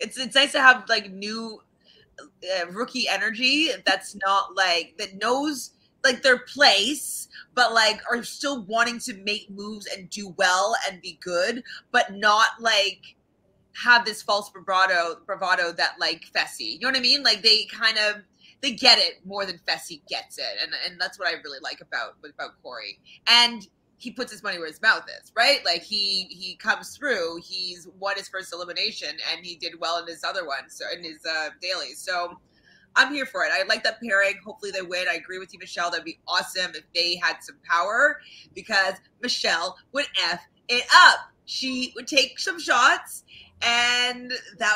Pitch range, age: 180-245 Hz, 30-49